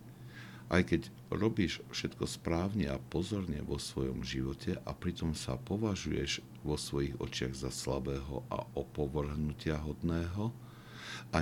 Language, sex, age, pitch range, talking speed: Slovak, male, 60-79, 65-85 Hz, 120 wpm